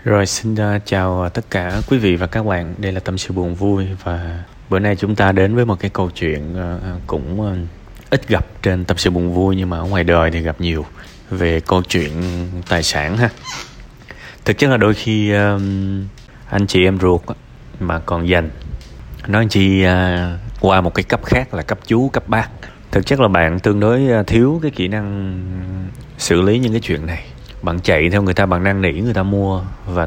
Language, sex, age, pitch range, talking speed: Vietnamese, male, 20-39, 90-115 Hz, 205 wpm